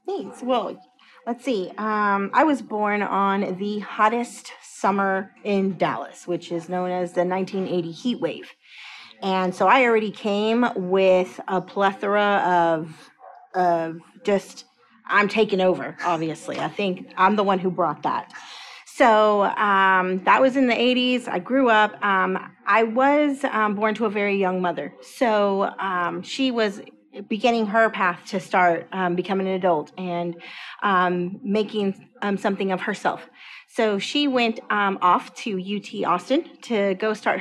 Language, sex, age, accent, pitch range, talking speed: English, female, 30-49, American, 185-230 Hz, 155 wpm